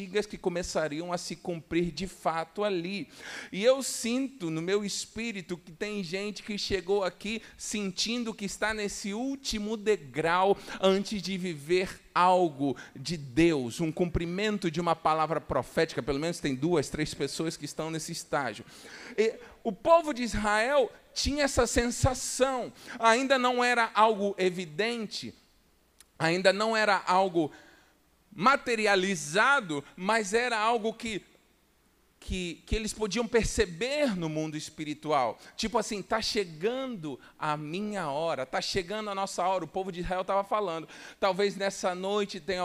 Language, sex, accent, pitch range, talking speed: Portuguese, male, Brazilian, 175-225 Hz, 140 wpm